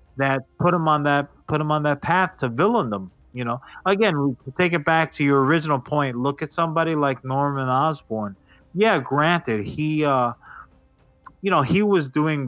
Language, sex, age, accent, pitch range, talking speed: English, male, 30-49, American, 125-160 Hz, 185 wpm